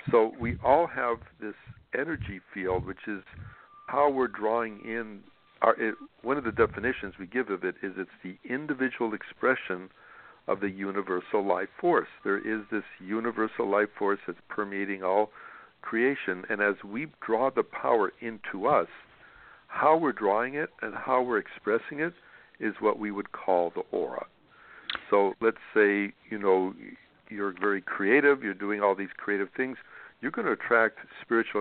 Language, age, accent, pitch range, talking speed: English, 60-79, American, 95-115 Hz, 160 wpm